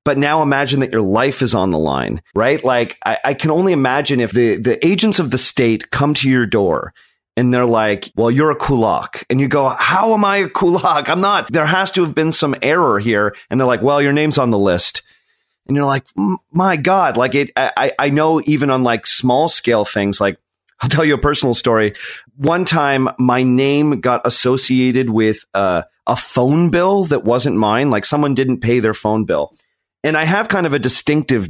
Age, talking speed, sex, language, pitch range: 30-49, 215 wpm, male, English, 115-150 Hz